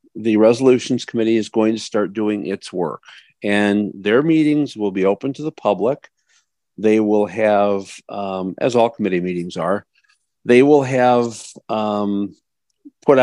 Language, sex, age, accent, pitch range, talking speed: English, male, 50-69, American, 105-140 Hz, 150 wpm